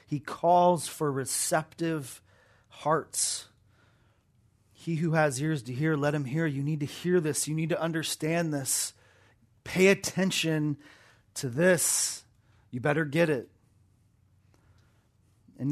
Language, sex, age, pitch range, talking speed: English, male, 30-49, 120-170 Hz, 125 wpm